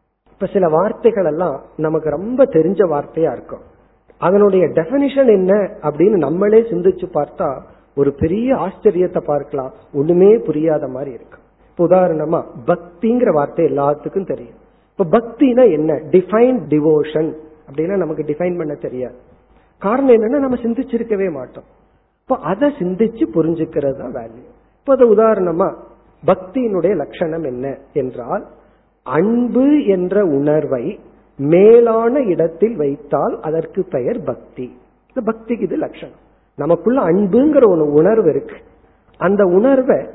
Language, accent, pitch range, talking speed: Tamil, native, 155-230 Hz, 105 wpm